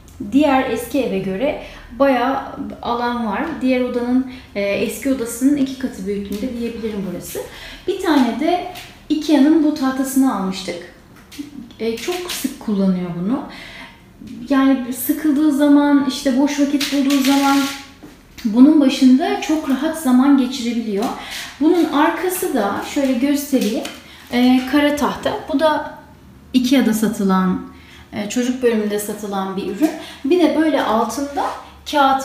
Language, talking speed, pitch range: Turkish, 120 wpm, 235-290 Hz